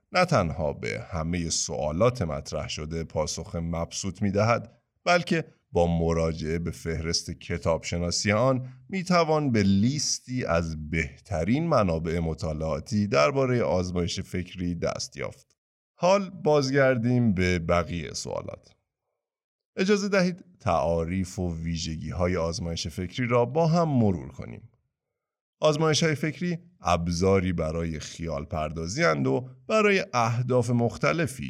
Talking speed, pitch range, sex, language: 110 wpm, 85-130 Hz, male, Persian